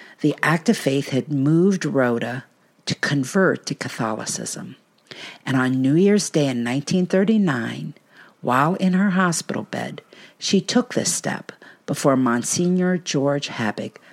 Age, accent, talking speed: 50-69, American, 130 wpm